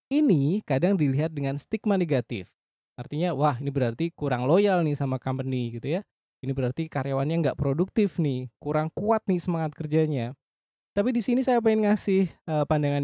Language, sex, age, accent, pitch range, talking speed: Indonesian, male, 20-39, native, 130-185 Hz, 165 wpm